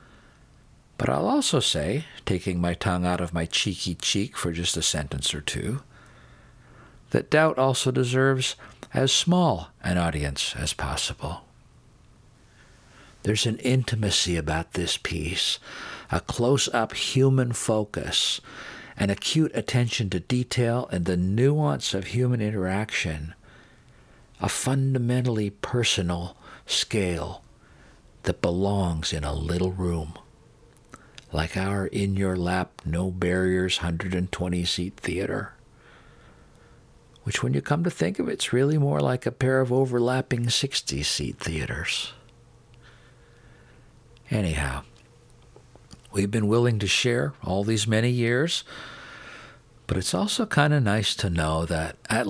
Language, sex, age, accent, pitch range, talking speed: English, male, 50-69, American, 85-125 Hz, 115 wpm